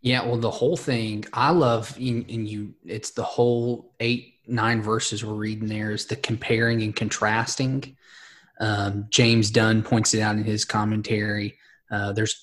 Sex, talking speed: male, 165 wpm